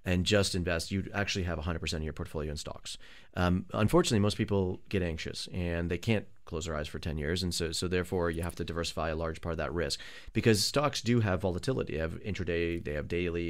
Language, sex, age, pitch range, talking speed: English, male, 30-49, 85-110 Hz, 230 wpm